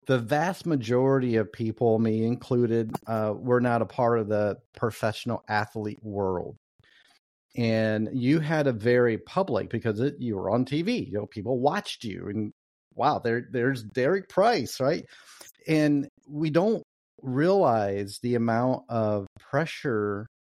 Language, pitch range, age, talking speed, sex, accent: English, 110-130 Hz, 40-59, 140 wpm, male, American